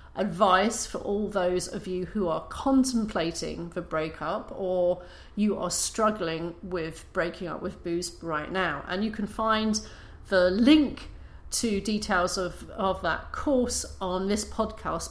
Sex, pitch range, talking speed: female, 180-235 Hz, 145 wpm